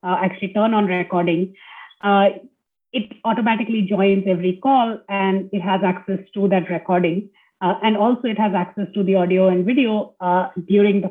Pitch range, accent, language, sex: 180-210 Hz, Indian, English, female